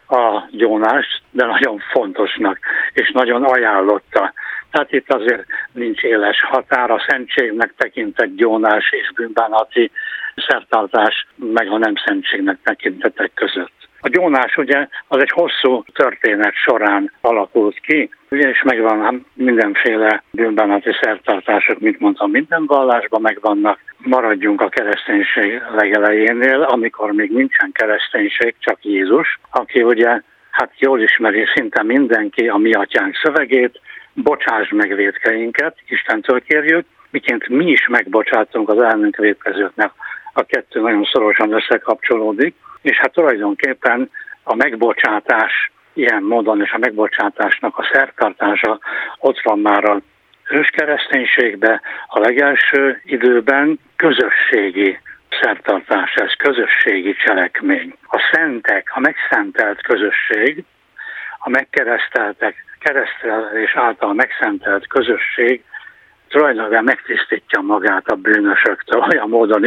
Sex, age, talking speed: male, 60-79, 110 wpm